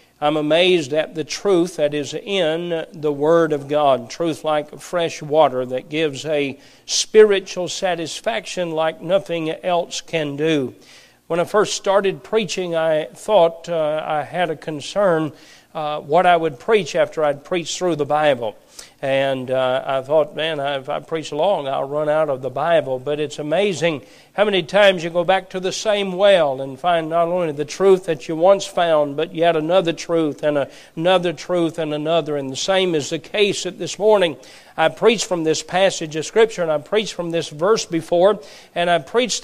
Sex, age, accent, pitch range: male, 50-69, American, 155-185 Hz